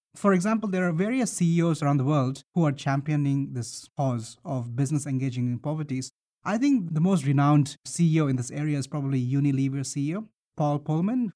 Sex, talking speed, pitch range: male, 180 wpm, 135-170 Hz